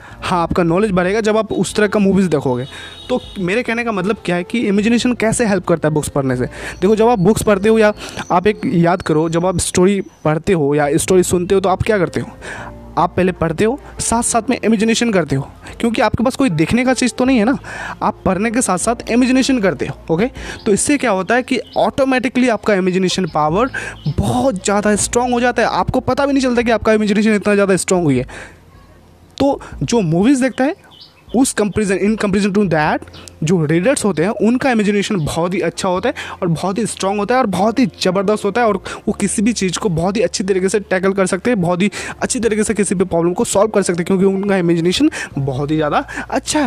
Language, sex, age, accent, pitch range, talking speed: Hindi, male, 20-39, native, 175-230 Hz, 230 wpm